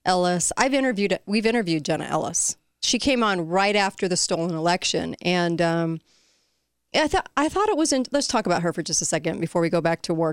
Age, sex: 40-59, female